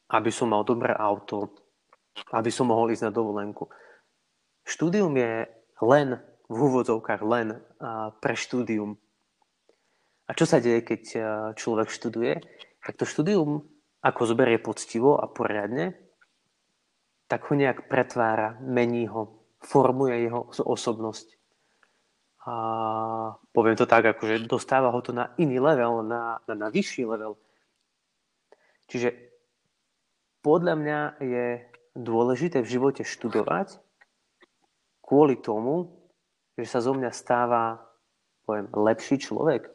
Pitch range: 110-130 Hz